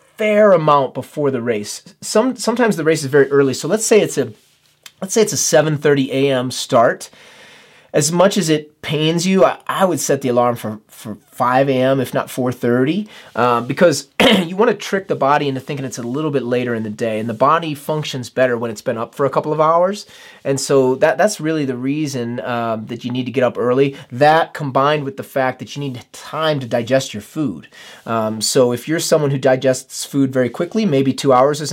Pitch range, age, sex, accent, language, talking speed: 120-150 Hz, 30-49, male, American, English, 220 wpm